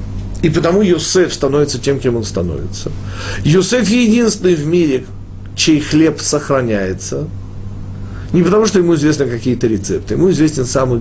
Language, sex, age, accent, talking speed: Russian, male, 50-69, native, 135 wpm